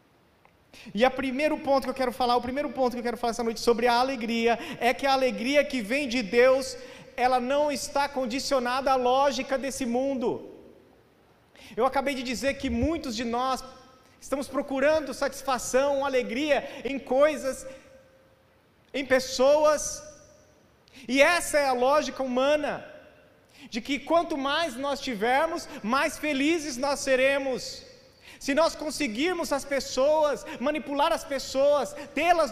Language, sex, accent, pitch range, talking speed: Portuguese, male, Brazilian, 245-285 Hz, 145 wpm